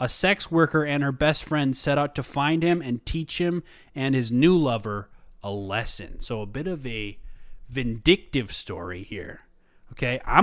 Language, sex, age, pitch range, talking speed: English, male, 20-39, 120-155 Hz, 180 wpm